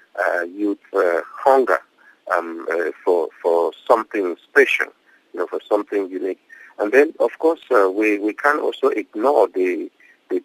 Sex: male